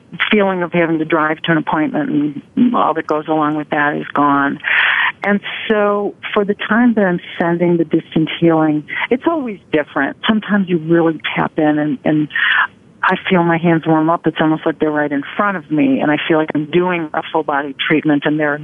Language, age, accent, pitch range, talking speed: English, 50-69, American, 155-195 Hz, 210 wpm